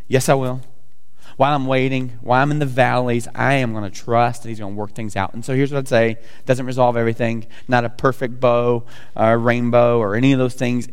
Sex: male